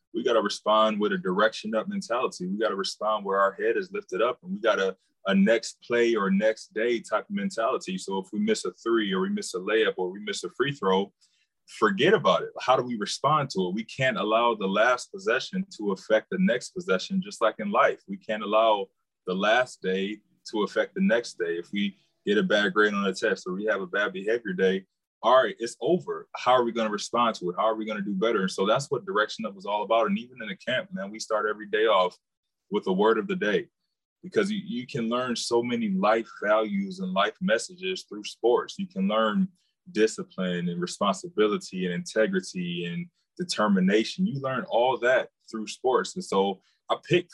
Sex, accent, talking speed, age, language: male, American, 225 wpm, 20-39, English